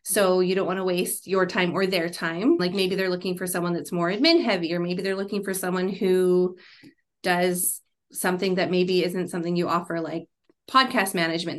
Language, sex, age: English, female, 20-39